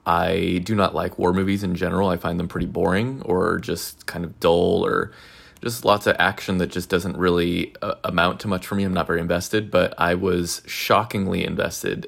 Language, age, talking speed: English, 20-39, 210 wpm